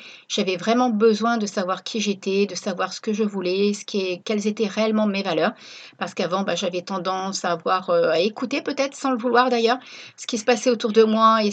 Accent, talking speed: French, 230 wpm